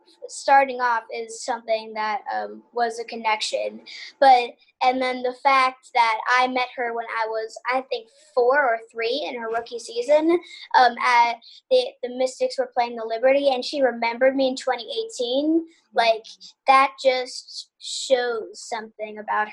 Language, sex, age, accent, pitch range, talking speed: English, female, 10-29, American, 225-265 Hz, 155 wpm